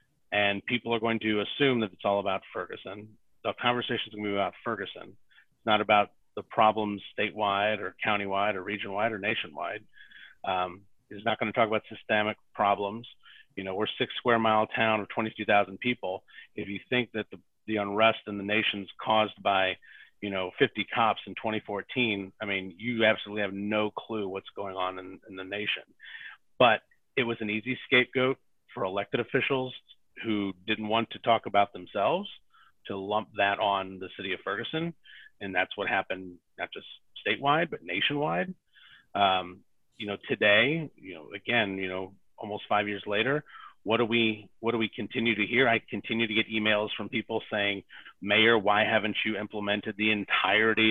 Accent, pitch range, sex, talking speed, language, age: American, 100-115 Hz, male, 180 wpm, English, 40-59